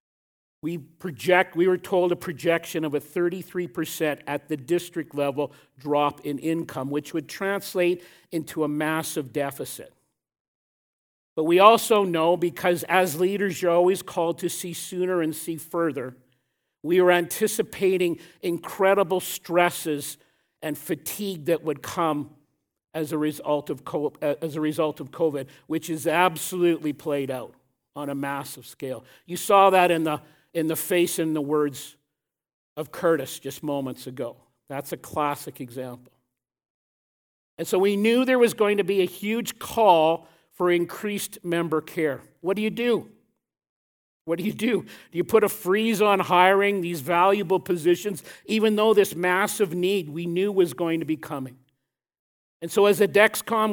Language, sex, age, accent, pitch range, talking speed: English, male, 50-69, American, 150-185 Hz, 150 wpm